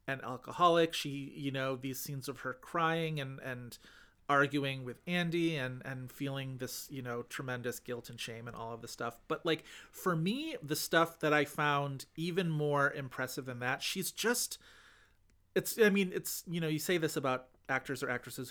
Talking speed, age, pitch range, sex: 190 wpm, 30-49, 125-165 Hz, male